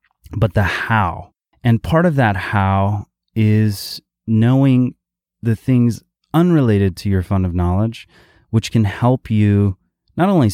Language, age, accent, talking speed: English, 30-49, American, 135 wpm